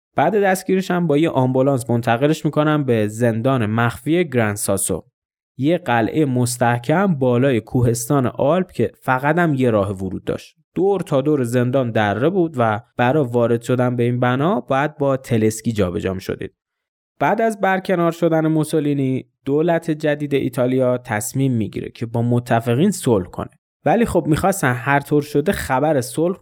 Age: 20-39